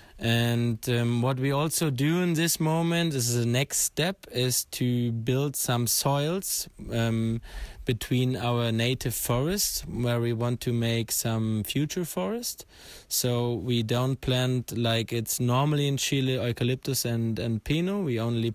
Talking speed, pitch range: 150 wpm, 115-135 Hz